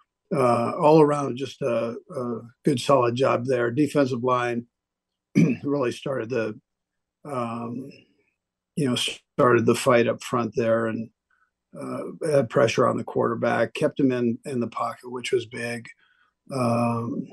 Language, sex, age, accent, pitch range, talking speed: English, male, 50-69, American, 115-135 Hz, 140 wpm